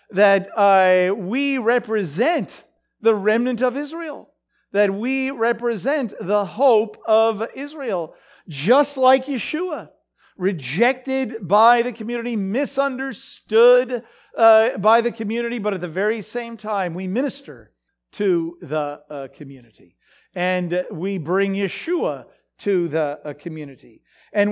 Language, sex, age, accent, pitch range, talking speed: English, male, 50-69, American, 185-250 Hz, 115 wpm